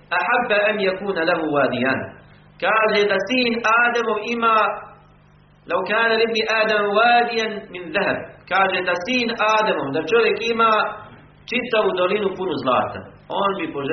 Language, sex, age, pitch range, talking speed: English, male, 50-69, 130-215 Hz, 95 wpm